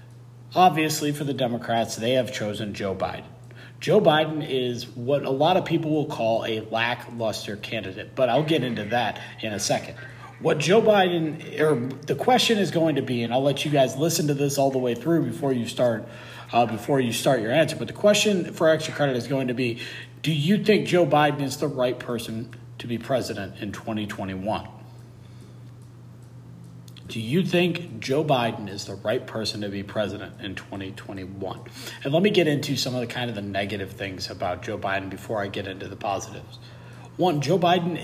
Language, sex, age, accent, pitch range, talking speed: English, male, 40-59, American, 120-160 Hz, 200 wpm